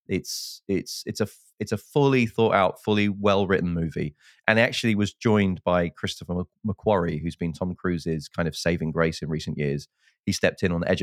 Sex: male